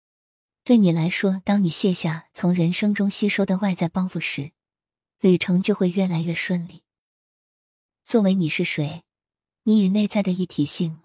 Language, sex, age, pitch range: Chinese, female, 20-39, 165-195 Hz